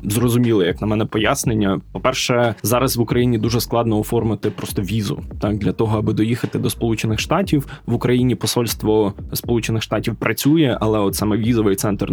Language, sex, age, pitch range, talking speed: Ukrainian, male, 20-39, 105-125 Hz, 165 wpm